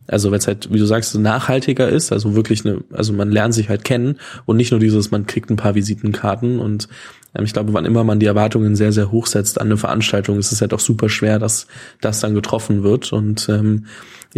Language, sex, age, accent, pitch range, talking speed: German, male, 20-39, German, 105-120 Hz, 240 wpm